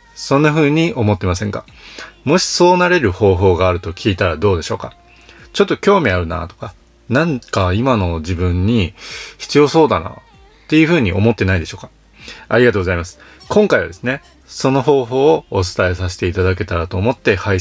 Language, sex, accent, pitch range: Japanese, male, native, 90-120 Hz